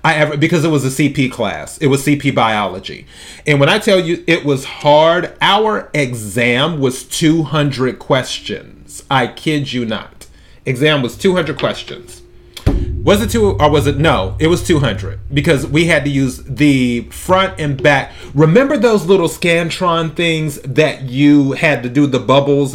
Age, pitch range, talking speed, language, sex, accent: 30-49, 130-170 Hz, 170 wpm, English, male, American